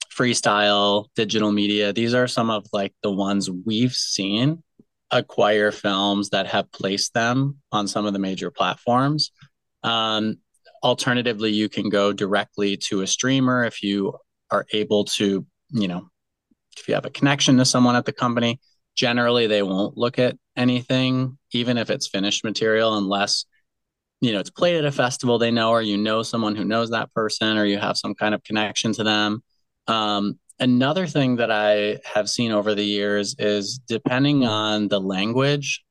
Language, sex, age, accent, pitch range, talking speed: English, male, 30-49, American, 105-125 Hz, 170 wpm